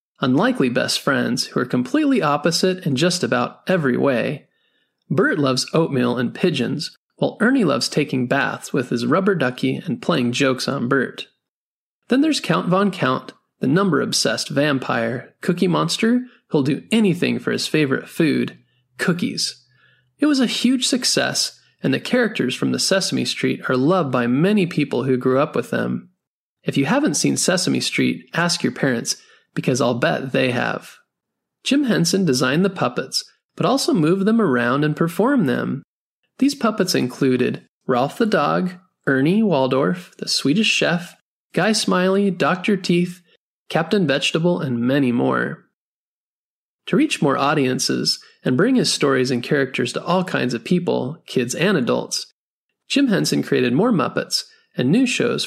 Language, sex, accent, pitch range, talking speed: English, male, American, 135-205 Hz, 155 wpm